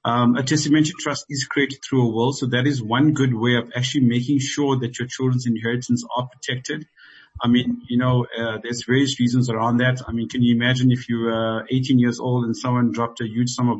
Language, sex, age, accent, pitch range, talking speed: English, male, 50-69, South African, 115-130 Hz, 230 wpm